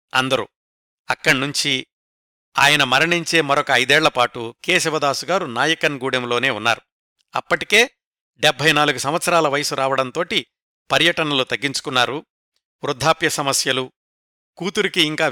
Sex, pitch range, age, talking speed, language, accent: male, 130-170 Hz, 60-79, 80 wpm, Telugu, native